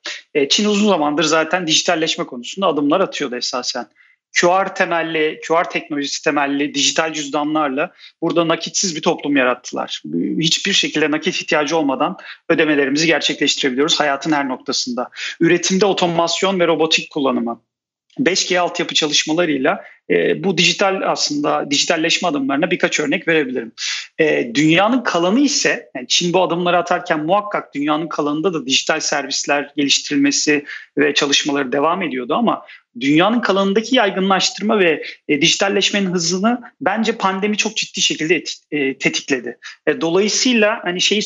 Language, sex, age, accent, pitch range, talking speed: Turkish, male, 40-59, native, 150-190 Hz, 120 wpm